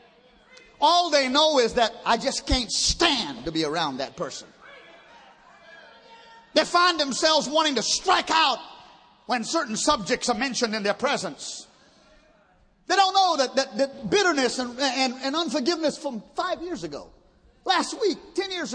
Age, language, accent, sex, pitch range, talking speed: 40-59, English, American, male, 220-330 Hz, 155 wpm